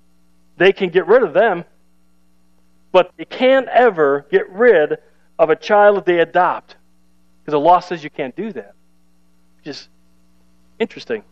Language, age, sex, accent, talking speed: English, 40-59, male, American, 155 wpm